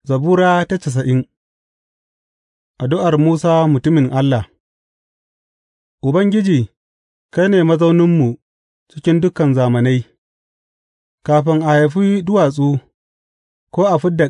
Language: English